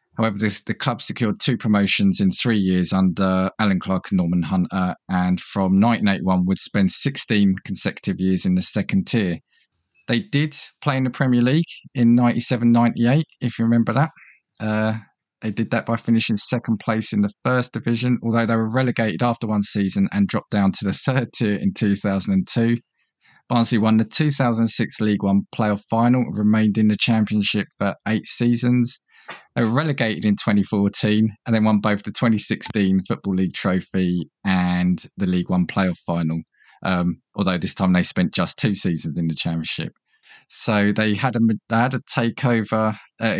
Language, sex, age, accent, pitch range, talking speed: English, male, 20-39, British, 100-120 Hz, 170 wpm